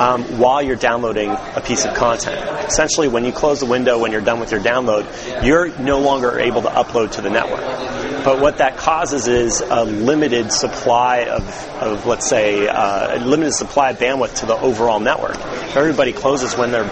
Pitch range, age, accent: 115-135 Hz, 30-49, American